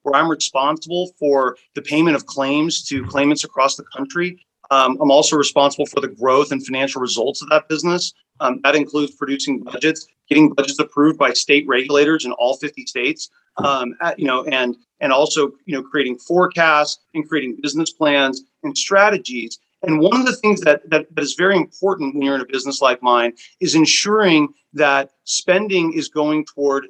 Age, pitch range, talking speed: 30-49, 135-165 Hz, 185 wpm